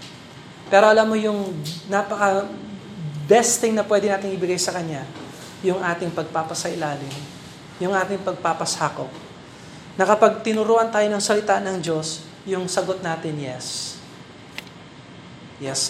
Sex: male